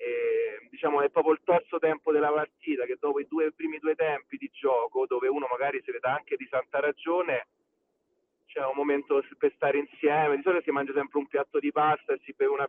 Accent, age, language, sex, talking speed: native, 30-49, Italian, male, 225 wpm